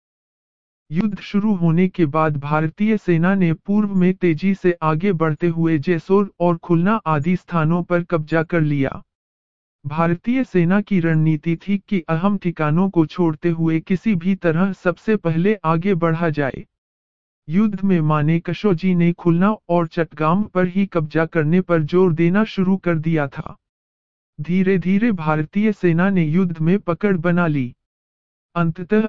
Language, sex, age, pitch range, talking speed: English, male, 50-69, 155-190 Hz, 120 wpm